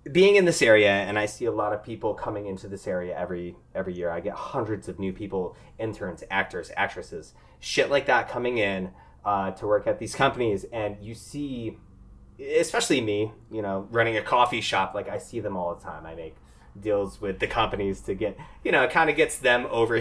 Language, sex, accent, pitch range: English, male, American, 95-120 Hz